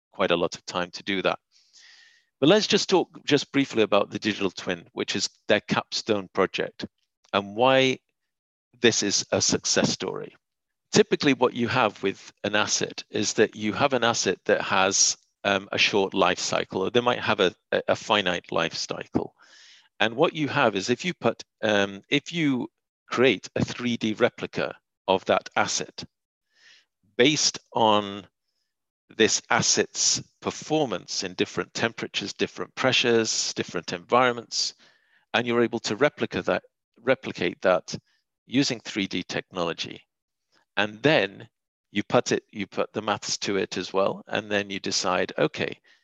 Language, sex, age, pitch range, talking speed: English, male, 50-69, 100-130 Hz, 155 wpm